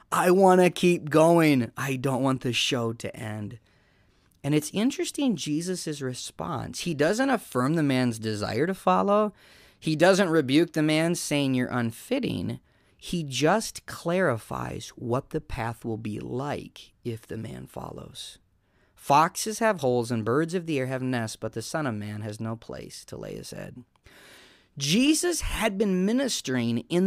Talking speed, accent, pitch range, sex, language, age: 160 wpm, American, 120-185 Hz, male, English, 30-49